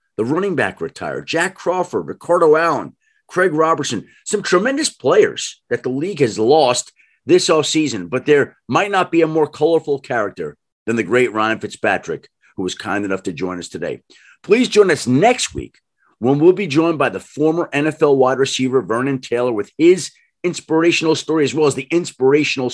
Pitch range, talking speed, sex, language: 120-160 Hz, 180 wpm, male, English